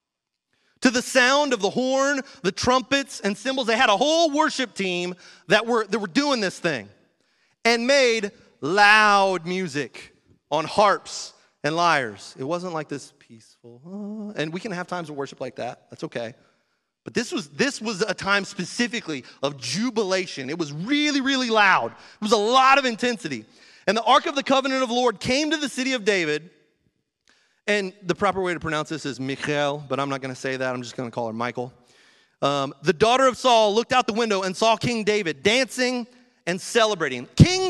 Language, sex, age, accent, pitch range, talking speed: English, male, 30-49, American, 170-260 Hz, 195 wpm